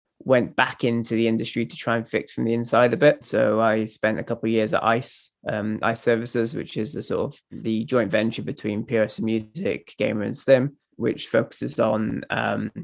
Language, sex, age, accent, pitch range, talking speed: English, male, 20-39, British, 110-140 Hz, 210 wpm